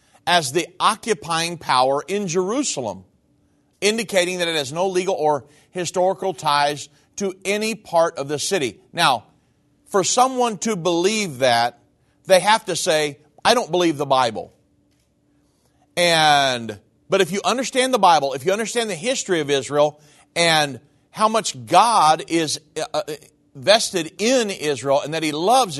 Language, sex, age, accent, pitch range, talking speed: English, male, 40-59, American, 150-205 Hz, 145 wpm